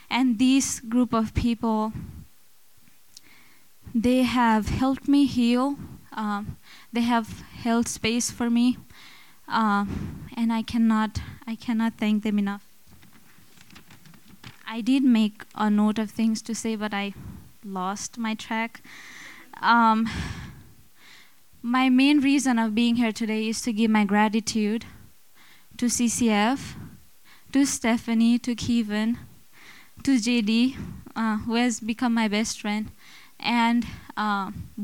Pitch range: 215-245 Hz